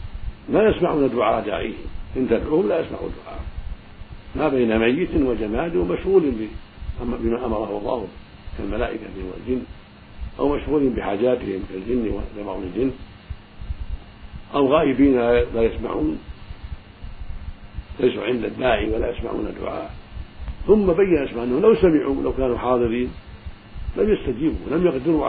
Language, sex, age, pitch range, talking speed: Arabic, male, 50-69, 90-120 Hz, 115 wpm